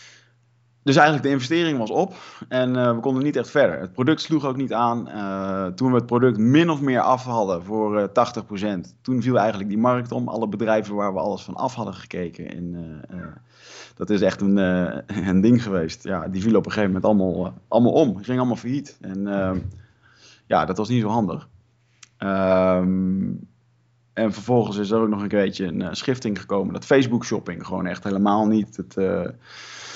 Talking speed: 205 wpm